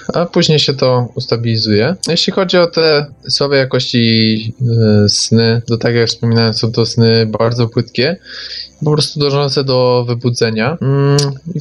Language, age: Polish, 20-39